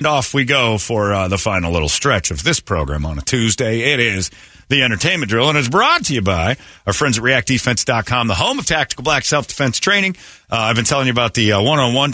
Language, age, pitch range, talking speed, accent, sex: English, 40-59, 95-130 Hz, 230 wpm, American, male